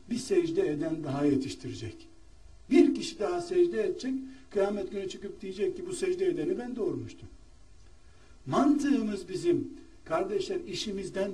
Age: 60-79